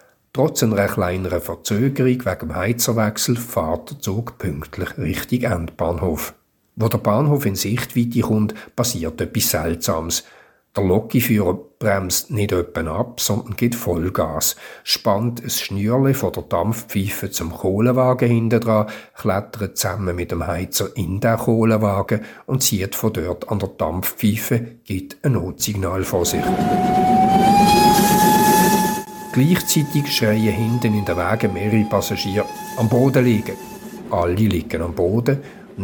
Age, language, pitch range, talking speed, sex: 50-69, German, 95-120 Hz, 125 wpm, male